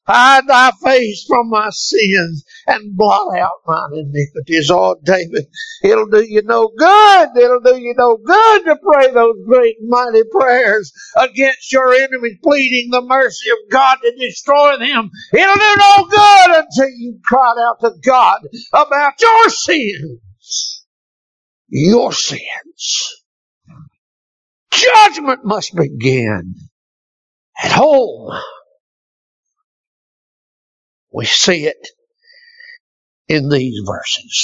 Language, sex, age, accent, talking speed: English, male, 60-79, American, 120 wpm